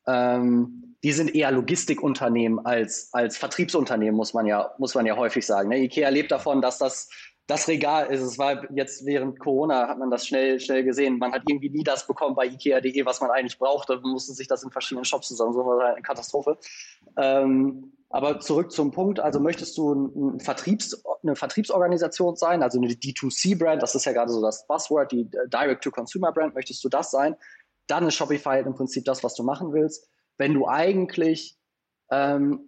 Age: 20-39